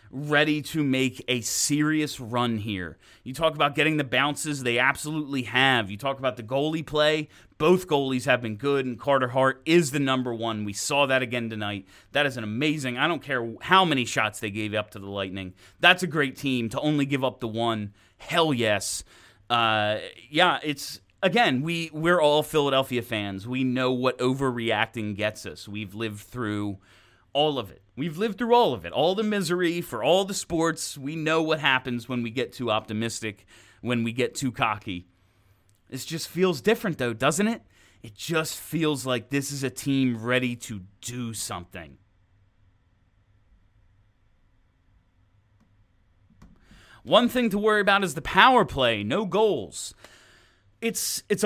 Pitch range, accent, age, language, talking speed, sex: 105-155 Hz, American, 30-49, English, 170 wpm, male